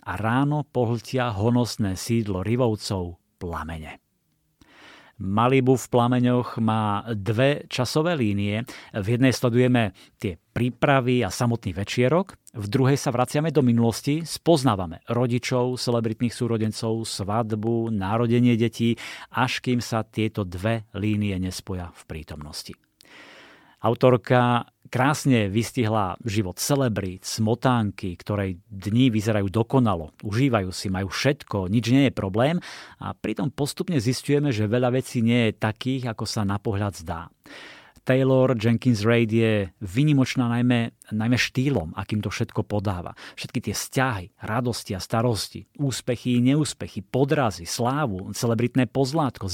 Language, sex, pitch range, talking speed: Slovak, male, 105-130 Hz, 120 wpm